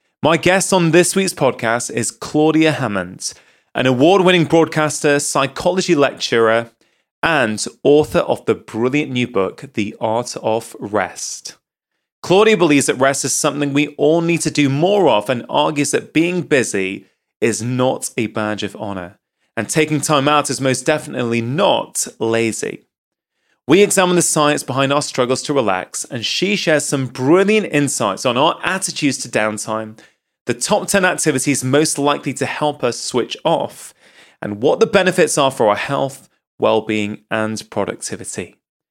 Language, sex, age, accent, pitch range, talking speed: English, male, 30-49, British, 120-160 Hz, 155 wpm